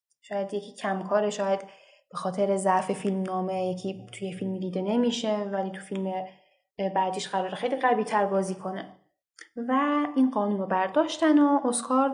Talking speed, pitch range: 155 wpm, 200-265 Hz